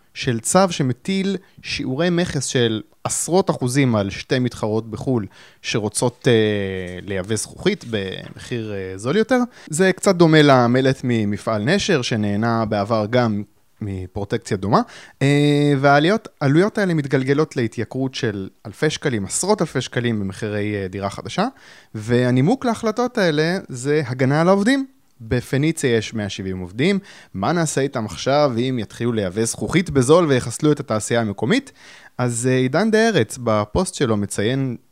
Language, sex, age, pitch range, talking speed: Hebrew, male, 20-39, 110-155 Hz, 130 wpm